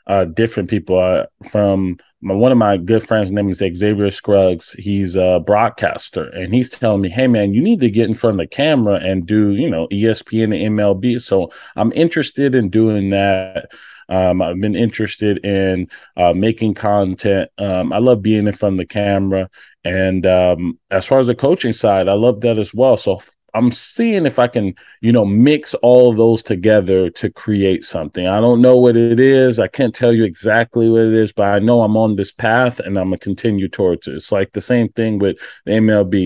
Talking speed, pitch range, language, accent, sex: 210 wpm, 95-115 Hz, English, American, male